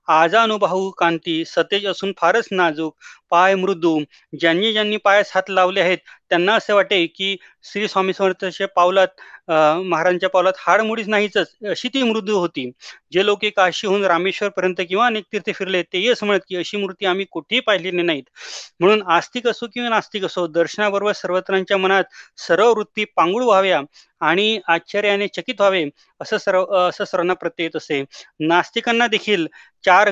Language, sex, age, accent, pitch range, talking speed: Marathi, male, 30-49, native, 165-205 Hz, 90 wpm